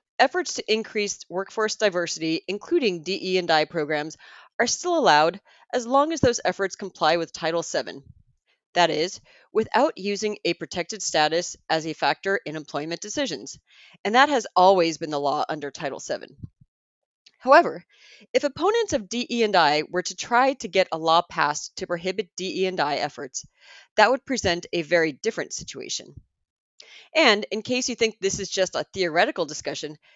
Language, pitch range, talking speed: English, 160-225 Hz, 155 wpm